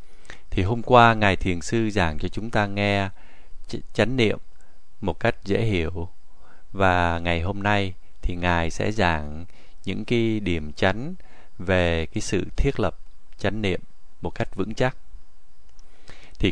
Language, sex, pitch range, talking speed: Vietnamese, male, 85-115 Hz, 150 wpm